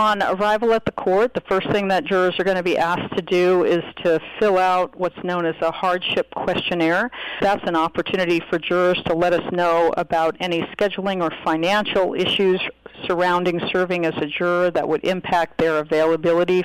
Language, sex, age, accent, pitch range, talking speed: English, female, 50-69, American, 160-190 Hz, 185 wpm